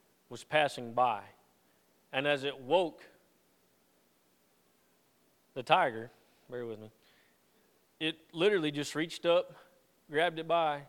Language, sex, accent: English, male, American